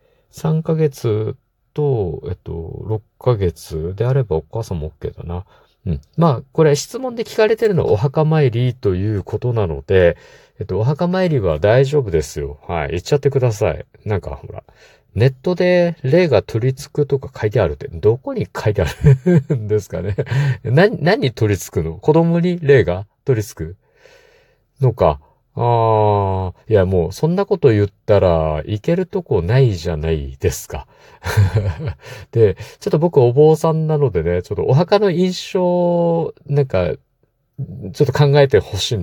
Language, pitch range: Japanese, 105-155 Hz